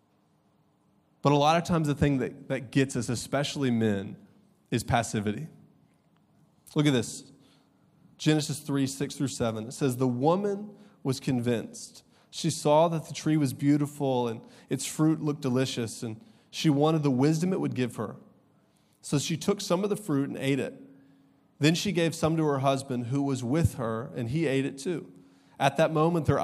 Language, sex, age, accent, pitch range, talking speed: English, male, 30-49, American, 135-175 Hz, 180 wpm